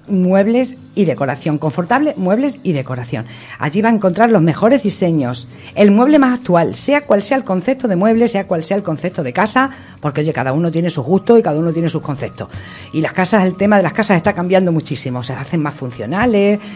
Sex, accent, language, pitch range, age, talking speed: female, Spanish, Spanish, 145-220 Hz, 50-69, 220 wpm